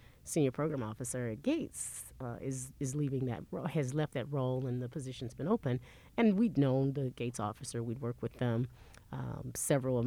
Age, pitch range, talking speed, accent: 30-49, 120-150 Hz, 195 wpm, American